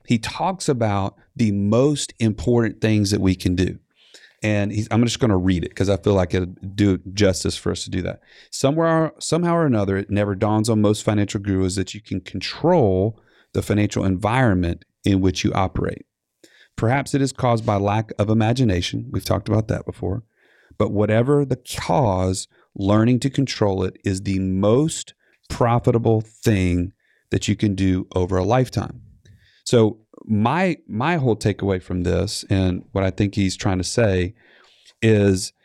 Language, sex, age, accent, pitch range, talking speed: English, male, 30-49, American, 95-115 Hz, 170 wpm